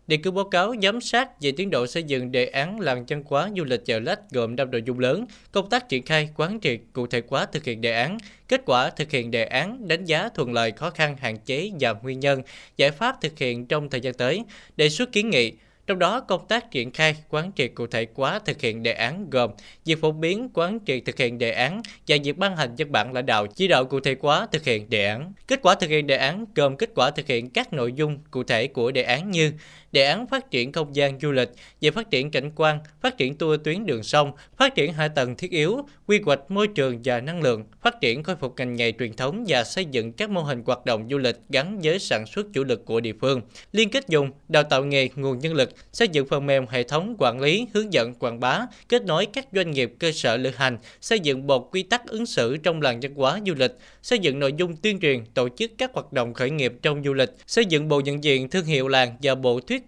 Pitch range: 125-185 Hz